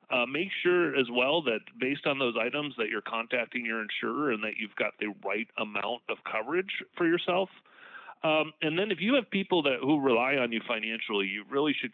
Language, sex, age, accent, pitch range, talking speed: English, male, 30-49, American, 105-125 Hz, 210 wpm